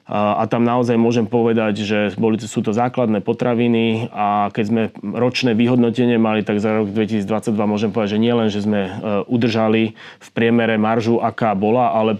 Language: Slovak